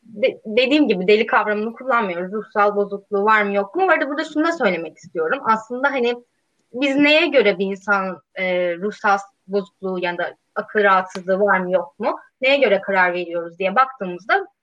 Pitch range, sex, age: 190-255 Hz, female, 20-39